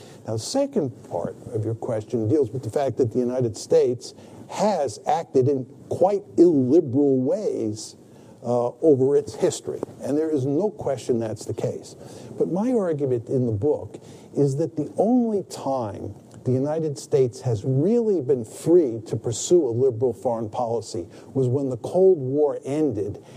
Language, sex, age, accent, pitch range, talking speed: English, male, 50-69, American, 125-175 Hz, 160 wpm